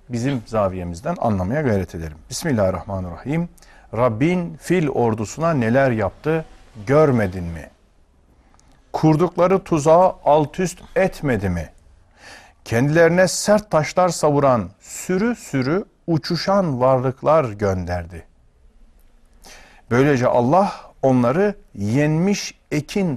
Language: Turkish